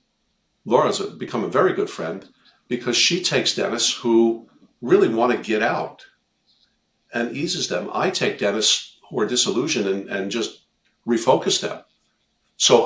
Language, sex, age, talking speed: English, male, 50-69, 145 wpm